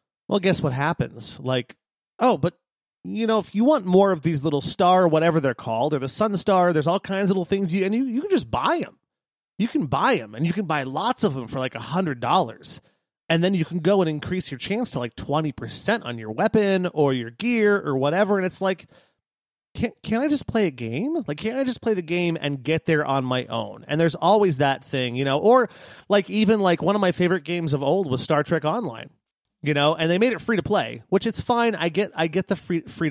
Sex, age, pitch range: male, 30-49, 145-200 Hz